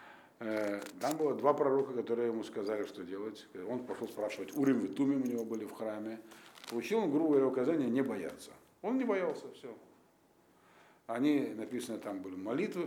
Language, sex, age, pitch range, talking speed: Russian, male, 50-69, 110-150 Hz, 160 wpm